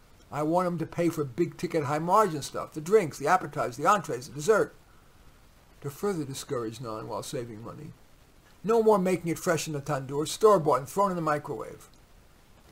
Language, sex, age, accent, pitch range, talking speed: English, male, 50-69, American, 140-170 Hz, 190 wpm